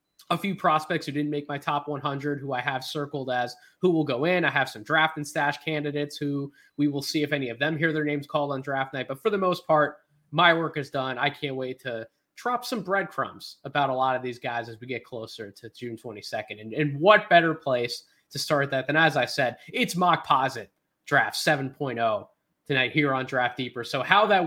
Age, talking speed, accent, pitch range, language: 20-39, 230 wpm, American, 135-165 Hz, English